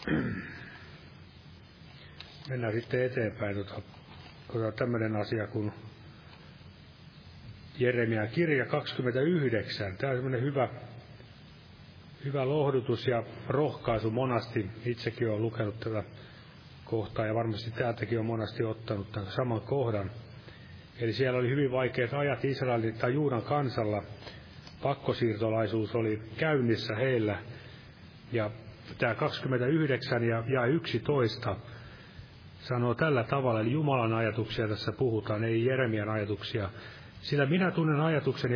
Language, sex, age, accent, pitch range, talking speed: Finnish, male, 30-49, native, 110-130 Hz, 100 wpm